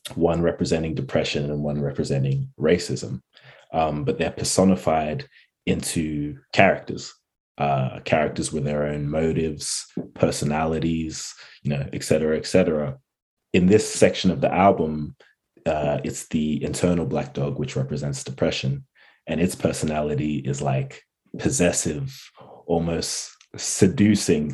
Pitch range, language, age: 75-85 Hz, English, 20-39